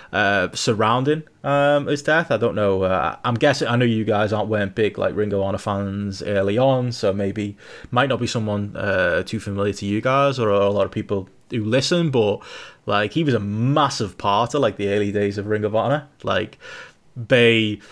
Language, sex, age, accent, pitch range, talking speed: English, male, 20-39, British, 105-130 Hz, 210 wpm